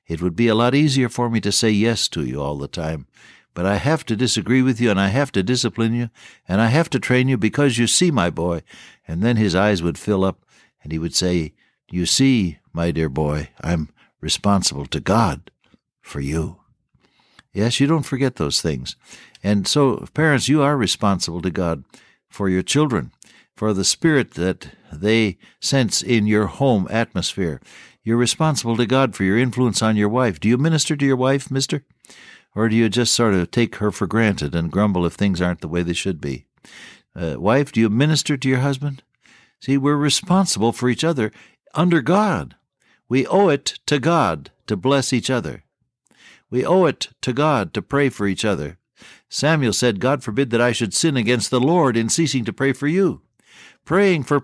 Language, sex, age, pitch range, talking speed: English, male, 60-79, 100-140 Hz, 200 wpm